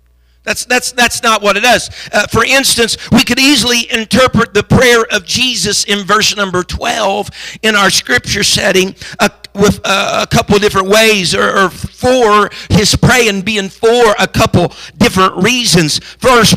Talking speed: 165 wpm